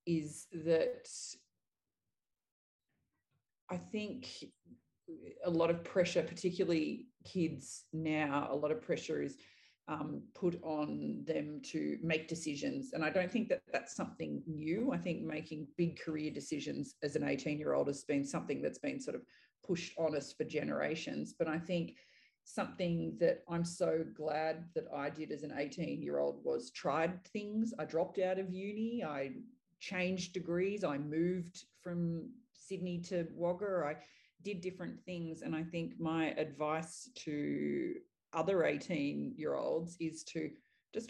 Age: 30-49